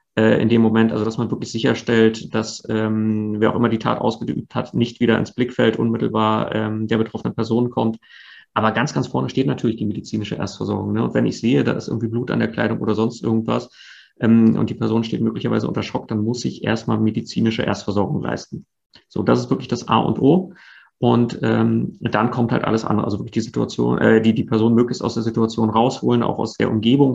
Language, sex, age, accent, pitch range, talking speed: German, male, 30-49, German, 110-120 Hz, 215 wpm